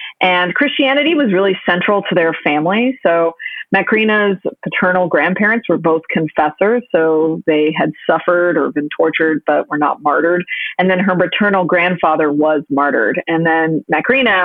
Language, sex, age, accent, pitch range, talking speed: English, female, 30-49, American, 160-190 Hz, 150 wpm